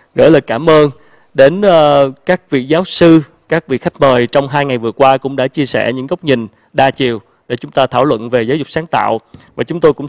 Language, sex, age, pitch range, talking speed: Vietnamese, male, 20-39, 125-155 Hz, 245 wpm